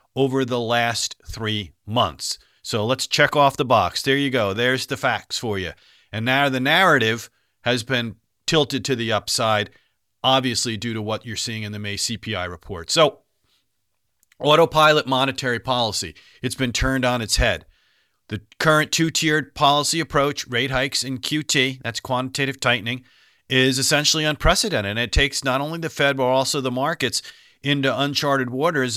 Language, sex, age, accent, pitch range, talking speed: English, male, 40-59, American, 115-140 Hz, 165 wpm